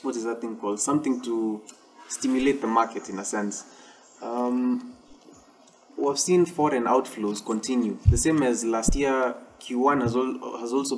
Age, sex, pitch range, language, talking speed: 20-39, male, 115-135 Hz, English, 160 wpm